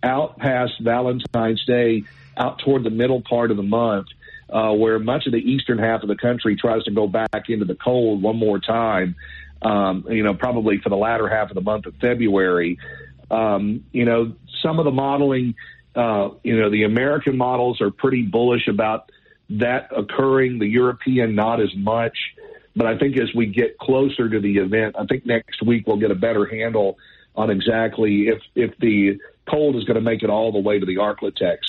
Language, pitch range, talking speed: English, 110-130 Hz, 200 wpm